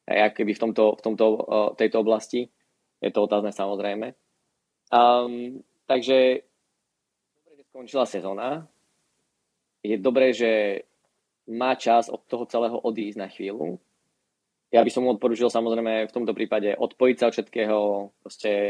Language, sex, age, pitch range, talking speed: Slovak, male, 20-39, 110-120 Hz, 125 wpm